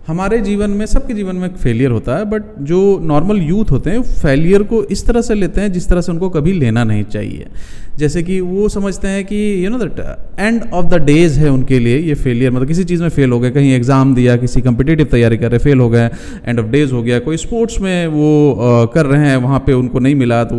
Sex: male